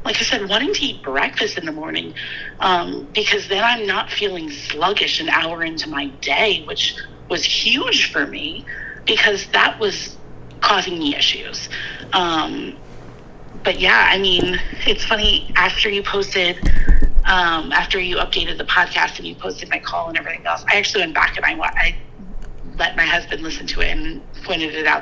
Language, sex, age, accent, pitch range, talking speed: English, female, 30-49, American, 150-205 Hz, 180 wpm